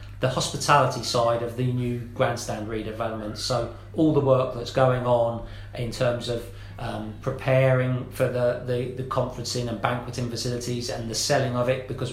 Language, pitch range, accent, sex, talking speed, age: English, 115-130 Hz, British, male, 170 wpm, 40-59